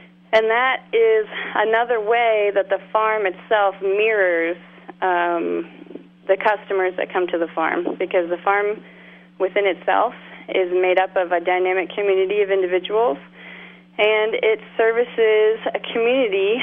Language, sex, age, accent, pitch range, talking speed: English, female, 30-49, American, 185-220 Hz, 135 wpm